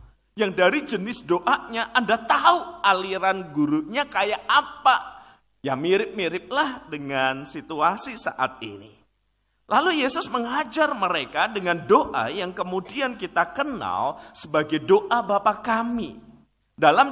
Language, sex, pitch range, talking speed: Malay, male, 150-240 Hz, 110 wpm